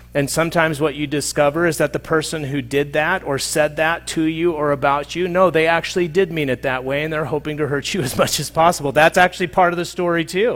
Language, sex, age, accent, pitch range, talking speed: English, male, 40-59, American, 120-160 Hz, 255 wpm